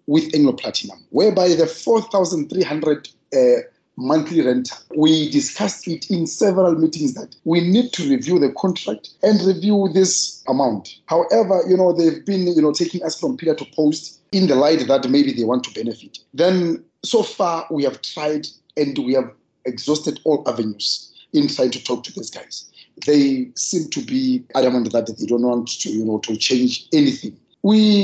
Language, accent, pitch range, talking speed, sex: English, South African, 135-195 Hz, 175 wpm, male